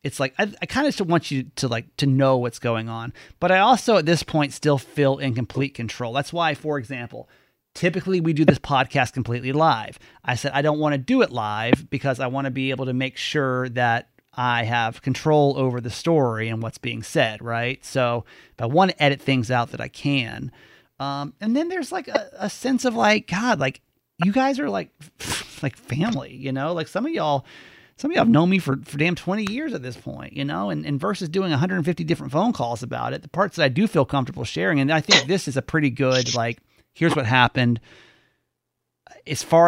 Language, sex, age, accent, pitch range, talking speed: English, male, 30-49, American, 125-155 Hz, 230 wpm